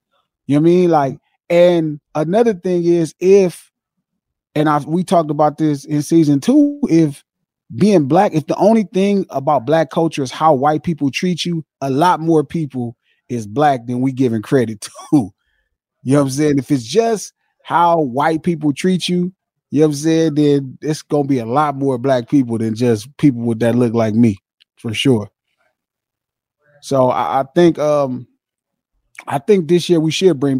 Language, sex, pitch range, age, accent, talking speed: English, male, 130-170 Hz, 20-39, American, 190 wpm